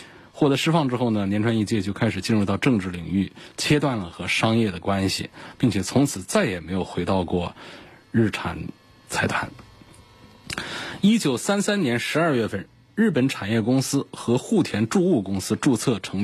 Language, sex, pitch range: Chinese, male, 100-135 Hz